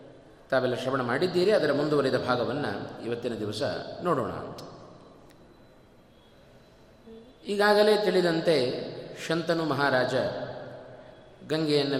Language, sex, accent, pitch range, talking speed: Kannada, male, native, 130-200 Hz, 70 wpm